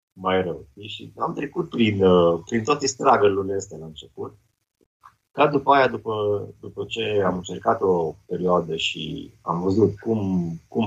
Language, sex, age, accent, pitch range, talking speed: Romanian, male, 30-49, native, 95-115 Hz, 160 wpm